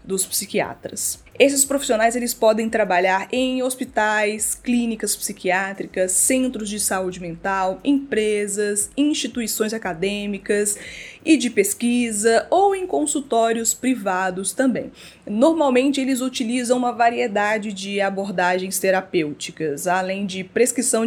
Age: 20-39